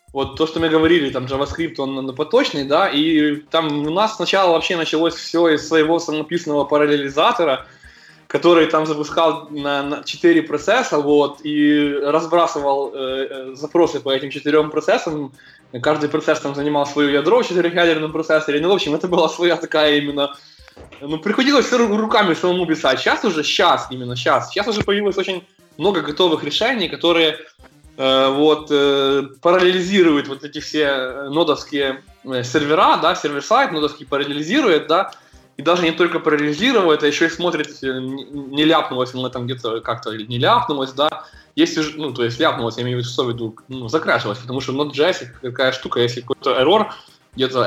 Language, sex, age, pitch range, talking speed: Russian, male, 20-39, 135-165 Hz, 160 wpm